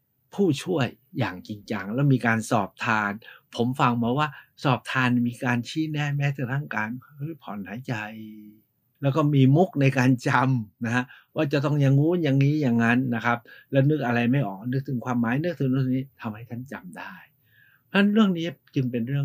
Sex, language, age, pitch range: male, Thai, 60-79, 115-140 Hz